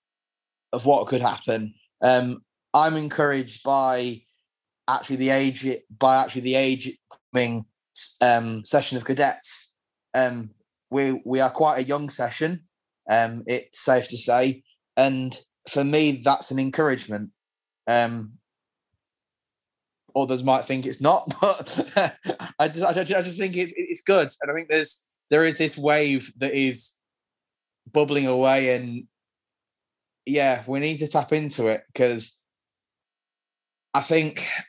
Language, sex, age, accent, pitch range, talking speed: English, male, 20-39, British, 125-150 Hz, 135 wpm